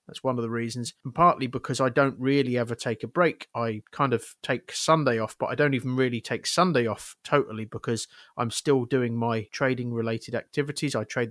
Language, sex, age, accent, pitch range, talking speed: English, male, 30-49, British, 120-150 Hz, 210 wpm